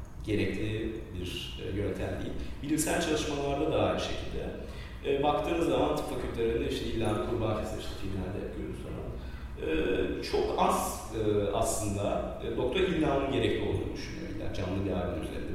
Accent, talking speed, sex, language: native, 130 wpm, male, Turkish